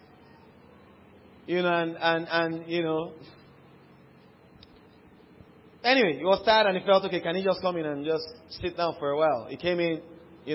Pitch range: 160-190 Hz